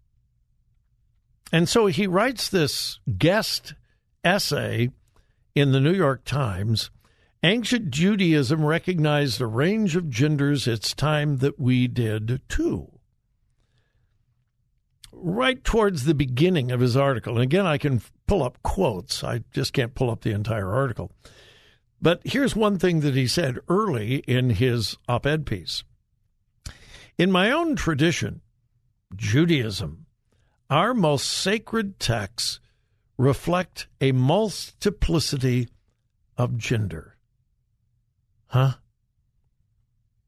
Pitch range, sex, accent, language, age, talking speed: 115-155 Hz, male, American, English, 60-79, 110 wpm